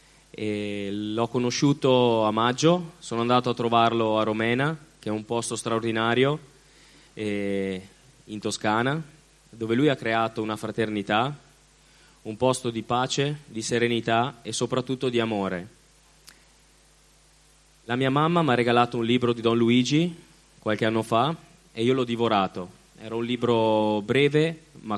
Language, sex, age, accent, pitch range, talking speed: Italian, male, 20-39, native, 110-130 Hz, 135 wpm